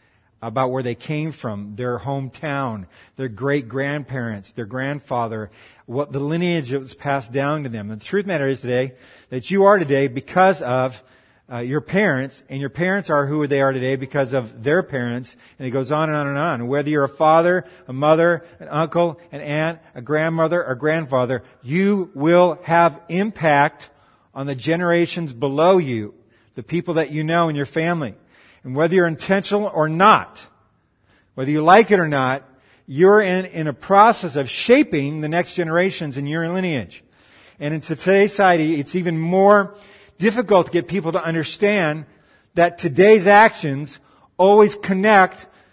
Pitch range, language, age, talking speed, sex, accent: 135-185 Hz, English, 40-59, 170 wpm, male, American